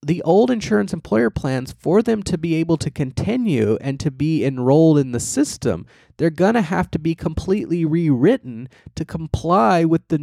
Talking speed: 180 wpm